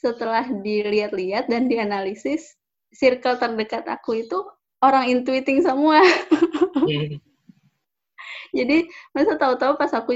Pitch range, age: 205-265 Hz, 10-29